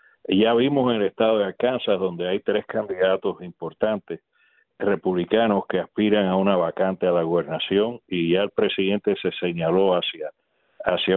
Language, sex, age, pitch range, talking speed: Spanish, male, 40-59, 95-110 Hz, 155 wpm